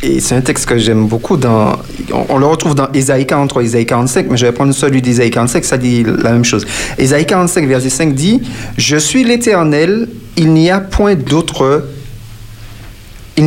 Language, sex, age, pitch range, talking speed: French, male, 40-59, 130-180 Hz, 190 wpm